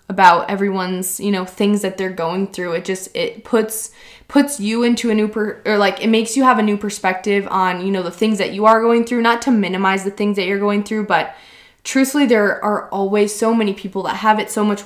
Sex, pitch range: female, 180-215 Hz